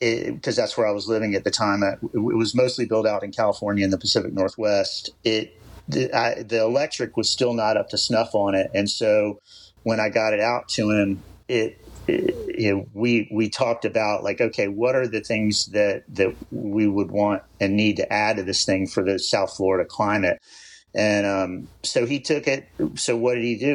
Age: 50-69